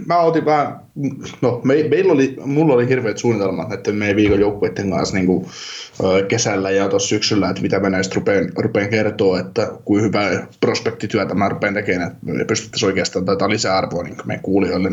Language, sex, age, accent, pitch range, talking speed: Finnish, male, 20-39, native, 105-125 Hz, 170 wpm